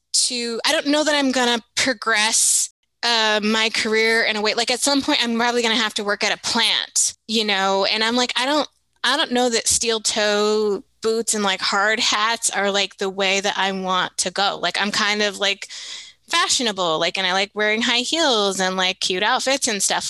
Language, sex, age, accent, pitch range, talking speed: English, female, 20-39, American, 195-235 Hz, 220 wpm